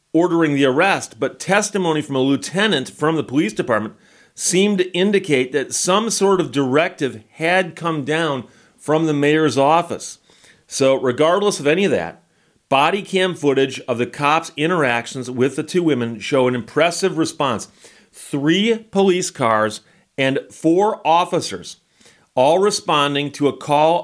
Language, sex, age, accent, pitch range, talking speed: English, male, 40-59, American, 130-170 Hz, 145 wpm